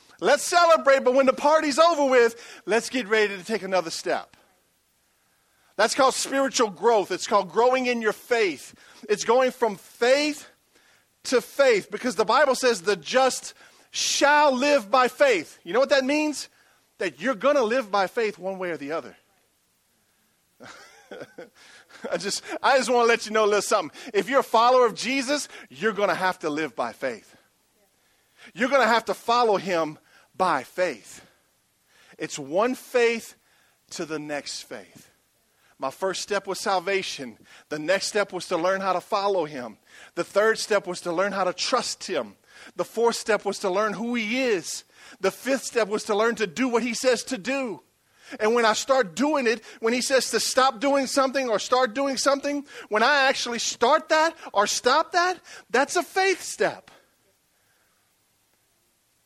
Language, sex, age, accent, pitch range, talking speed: English, male, 40-59, American, 200-270 Hz, 175 wpm